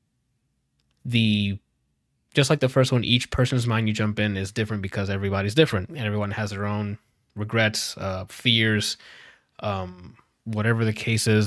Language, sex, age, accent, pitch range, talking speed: English, male, 20-39, American, 105-125 Hz, 155 wpm